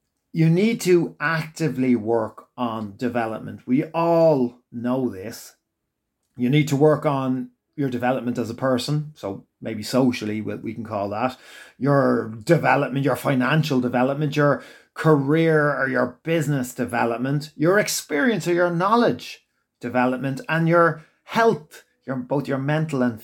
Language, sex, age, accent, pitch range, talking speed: English, male, 30-49, Irish, 120-150 Hz, 135 wpm